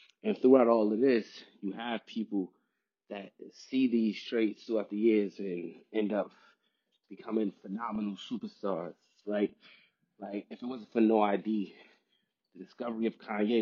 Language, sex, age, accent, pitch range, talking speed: English, male, 30-49, American, 105-120 Hz, 145 wpm